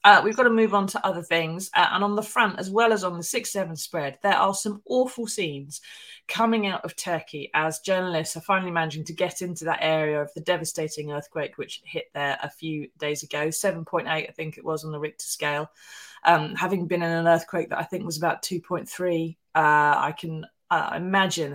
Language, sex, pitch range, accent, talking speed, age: English, female, 155-195 Hz, British, 210 wpm, 20-39